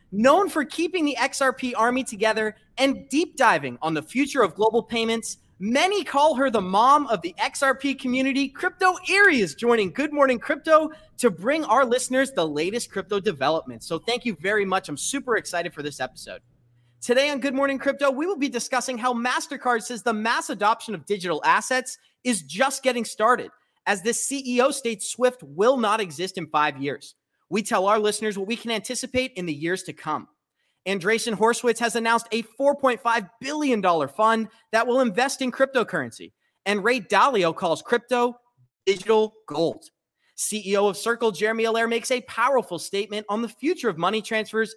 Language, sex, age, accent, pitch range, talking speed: English, male, 30-49, American, 205-265 Hz, 175 wpm